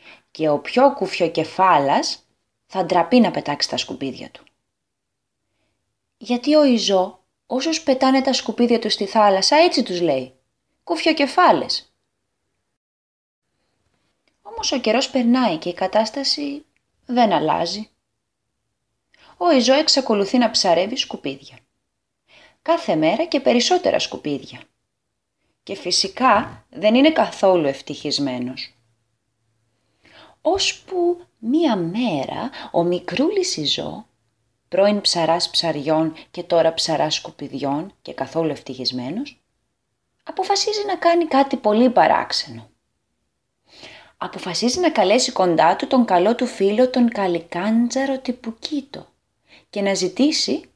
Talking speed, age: 105 wpm, 20-39